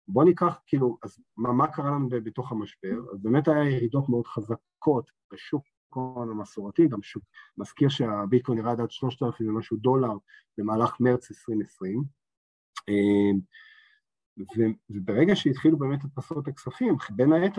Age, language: 40-59, Hebrew